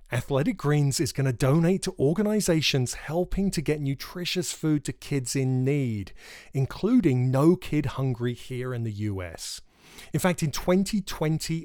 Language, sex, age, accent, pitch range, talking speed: English, male, 30-49, British, 125-180 Hz, 150 wpm